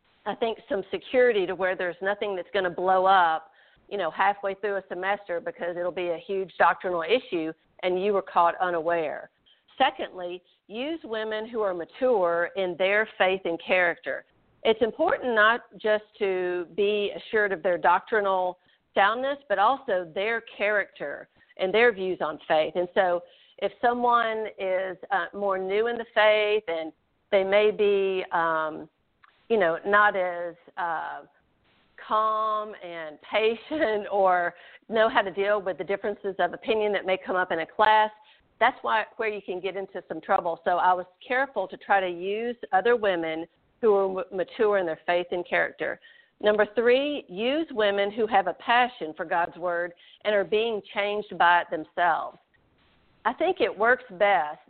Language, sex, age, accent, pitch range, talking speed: English, female, 50-69, American, 180-215 Hz, 165 wpm